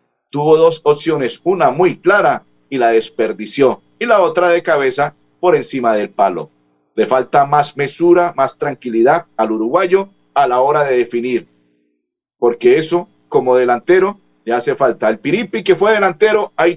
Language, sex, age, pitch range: Spanish, male, 50-69, 120-200 Hz